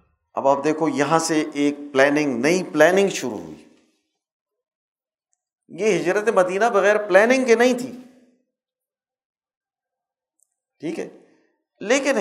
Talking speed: 110 wpm